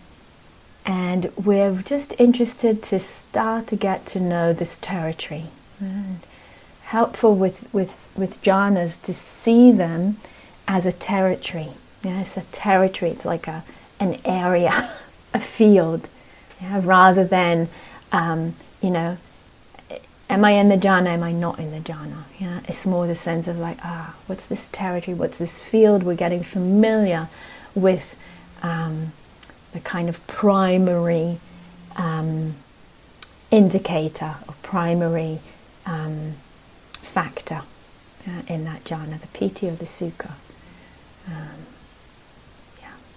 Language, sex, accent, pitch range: English, female, British, 165-200 Hz